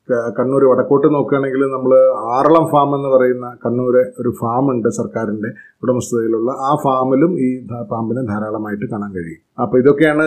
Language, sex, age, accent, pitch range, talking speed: Malayalam, male, 30-49, native, 120-140 Hz, 130 wpm